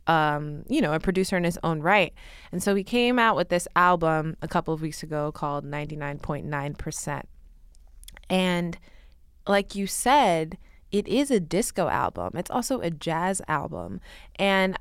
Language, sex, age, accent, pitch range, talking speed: English, female, 20-39, American, 155-190 Hz, 160 wpm